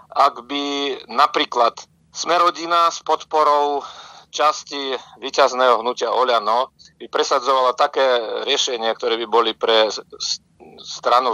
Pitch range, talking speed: 125-150 Hz, 100 wpm